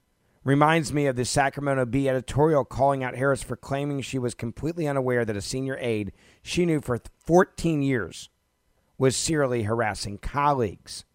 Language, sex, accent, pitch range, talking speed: English, male, American, 110-140 Hz, 155 wpm